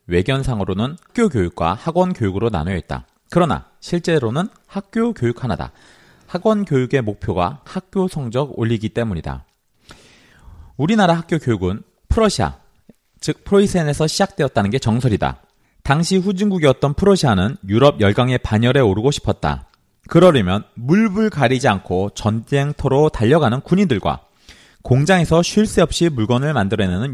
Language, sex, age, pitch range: Korean, male, 30-49, 105-165 Hz